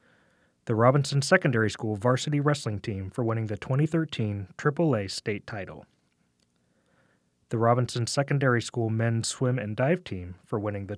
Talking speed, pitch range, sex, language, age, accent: 140 wpm, 105-135 Hz, male, English, 30-49, American